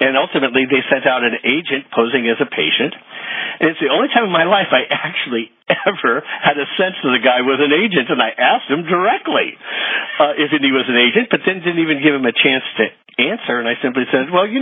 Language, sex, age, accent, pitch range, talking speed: English, male, 50-69, American, 105-135 Hz, 235 wpm